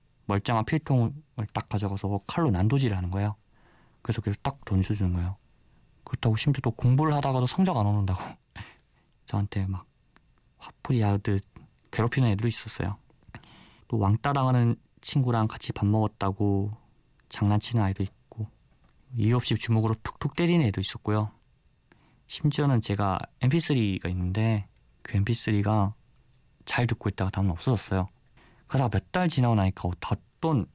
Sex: male